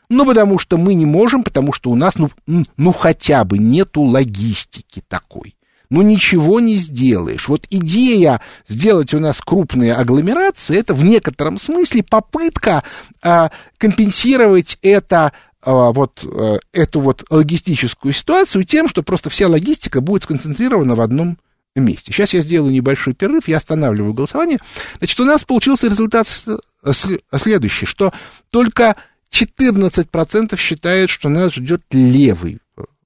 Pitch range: 135-215 Hz